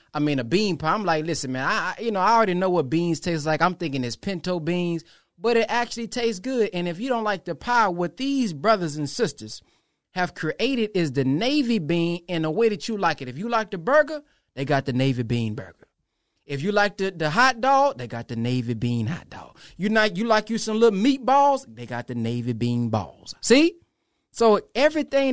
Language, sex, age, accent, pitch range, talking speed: English, male, 20-39, American, 155-225 Hz, 225 wpm